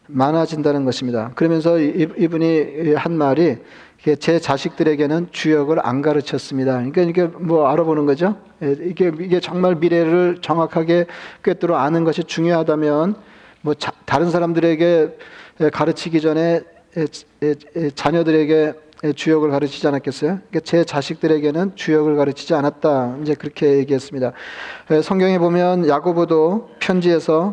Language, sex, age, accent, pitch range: Korean, male, 40-59, native, 150-175 Hz